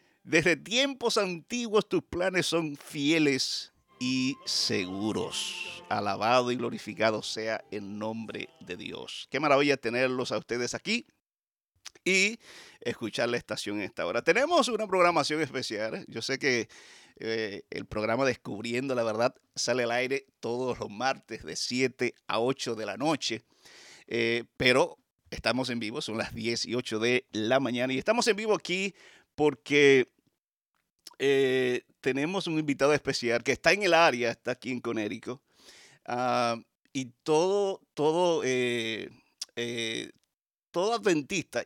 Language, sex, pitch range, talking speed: Spanish, male, 120-170 Hz, 130 wpm